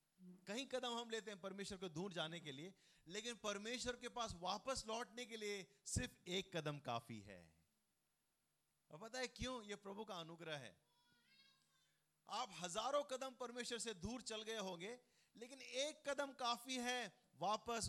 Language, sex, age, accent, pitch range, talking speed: Hindi, male, 30-49, native, 155-235 Hz, 160 wpm